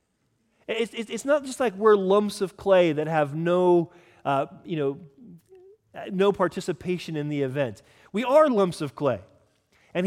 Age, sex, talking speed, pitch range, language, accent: 30-49, male, 155 wpm, 135-200 Hz, English, American